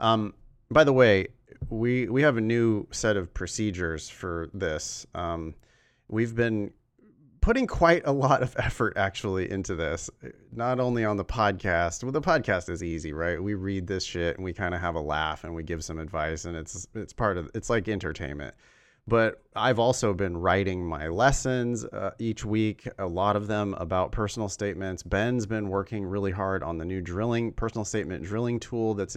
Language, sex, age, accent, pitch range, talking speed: English, male, 30-49, American, 90-115 Hz, 190 wpm